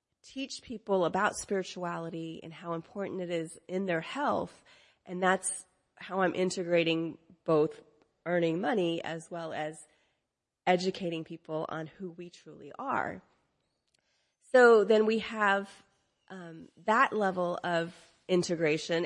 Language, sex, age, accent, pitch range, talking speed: English, female, 30-49, American, 165-200 Hz, 125 wpm